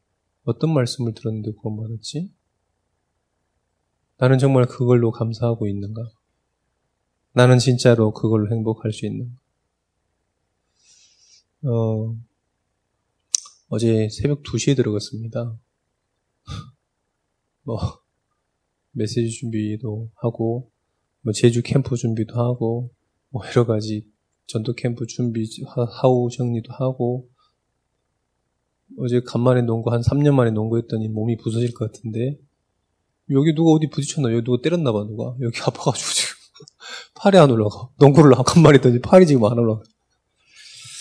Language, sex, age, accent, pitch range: Korean, male, 20-39, native, 110-130 Hz